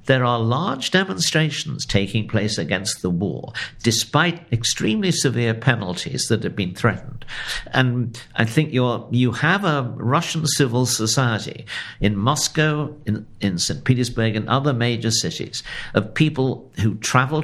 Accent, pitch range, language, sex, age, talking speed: British, 105-135 Hz, English, male, 60-79, 140 wpm